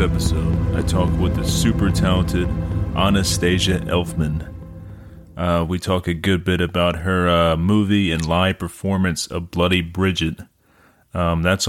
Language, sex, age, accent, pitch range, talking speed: English, male, 30-49, American, 85-100 Hz, 140 wpm